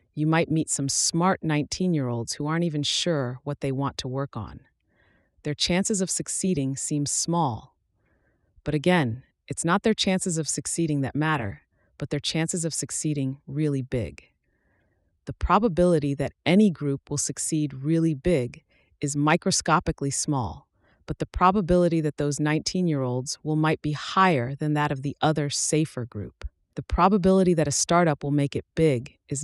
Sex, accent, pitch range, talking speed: female, American, 135-160 Hz, 160 wpm